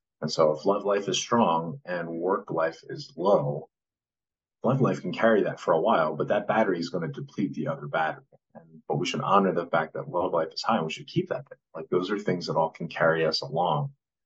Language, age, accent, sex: English, 30-49, American, male